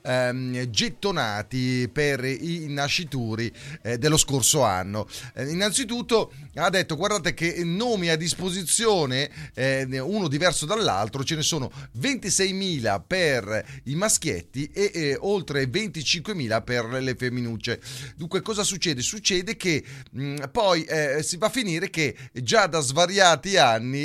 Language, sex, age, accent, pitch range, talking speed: Italian, male, 30-49, native, 130-190 Hz, 120 wpm